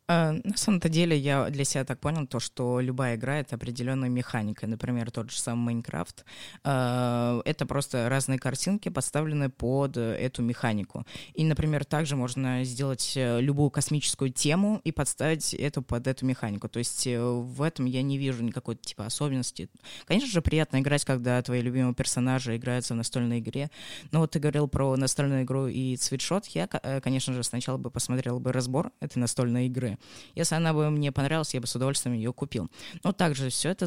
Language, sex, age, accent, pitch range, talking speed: Russian, female, 20-39, native, 125-145 Hz, 175 wpm